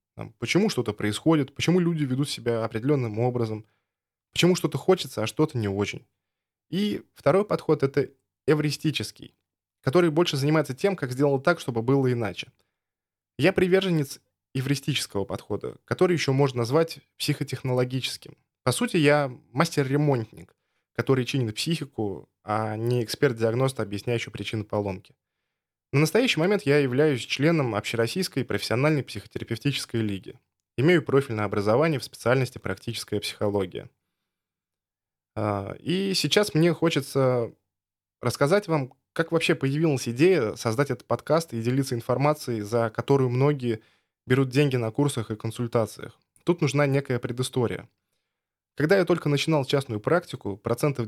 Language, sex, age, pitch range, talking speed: Russian, male, 10-29, 110-150 Hz, 125 wpm